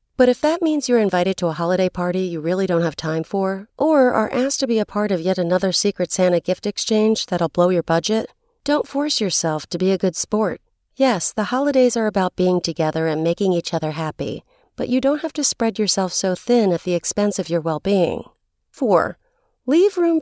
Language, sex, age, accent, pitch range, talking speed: English, female, 40-59, American, 180-255 Hz, 215 wpm